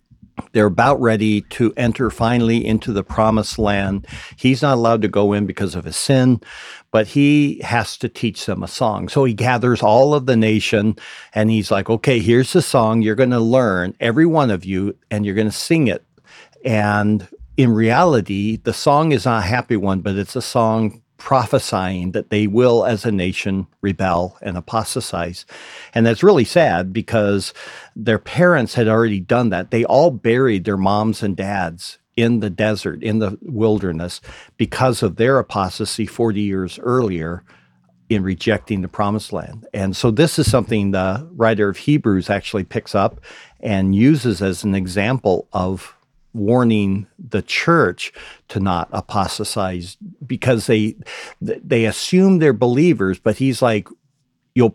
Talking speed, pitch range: 165 wpm, 100-125 Hz